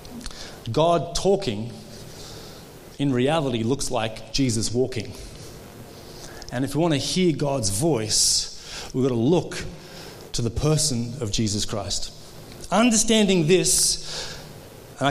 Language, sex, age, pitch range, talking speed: English, male, 30-49, 135-170 Hz, 115 wpm